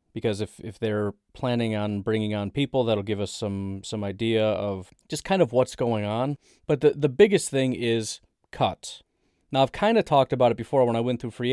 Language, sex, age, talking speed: English, male, 30-49, 220 wpm